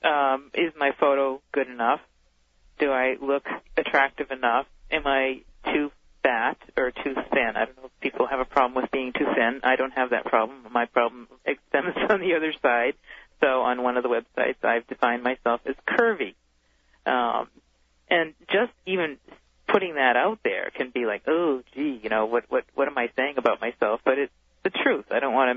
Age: 40-59